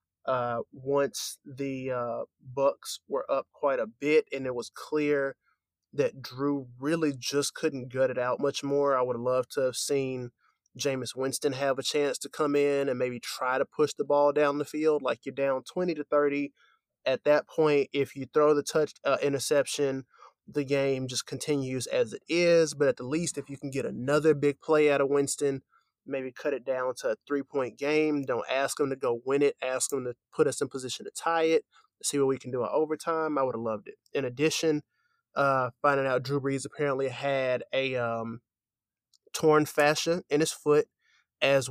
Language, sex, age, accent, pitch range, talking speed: English, male, 20-39, American, 130-150 Hz, 200 wpm